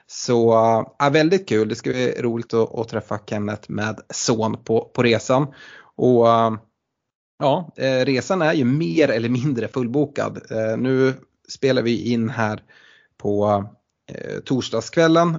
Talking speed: 130 wpm